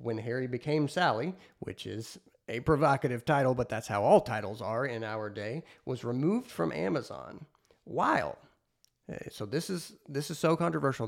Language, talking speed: English, 160 wpm